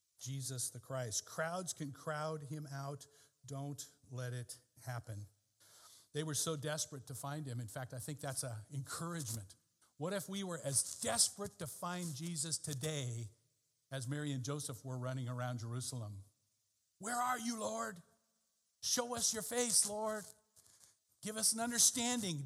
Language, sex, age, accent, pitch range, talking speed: English, male, 50-69, American, 125-165 Hz, 150 wpm